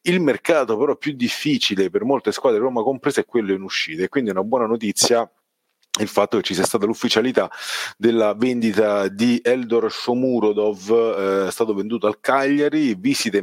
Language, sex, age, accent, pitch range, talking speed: Italian, male, 30-49, native, 100-155 Hz, 180 wpm